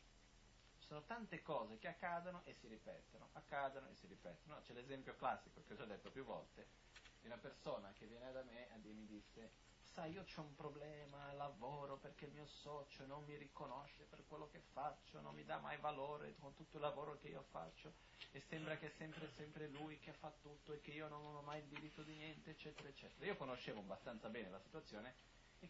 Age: 30-49